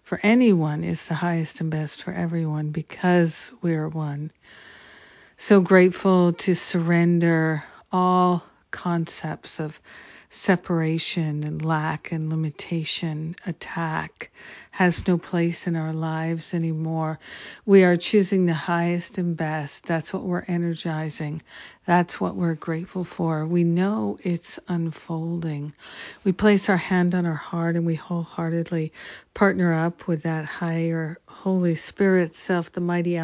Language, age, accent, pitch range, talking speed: English, 50-69, American, 160-180 Hz, 130 wpm